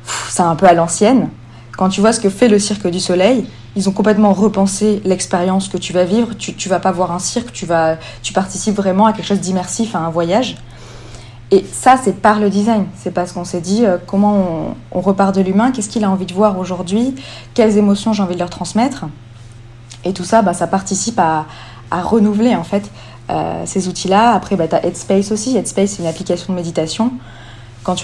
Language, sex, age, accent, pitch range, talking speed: French, female, 20-39, French, 175-210 Hz, 210 wpm